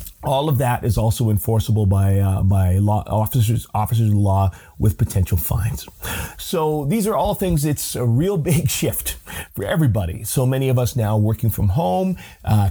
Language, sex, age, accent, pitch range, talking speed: English, male, 40-59, American, 105-140 Hz, 180 wpm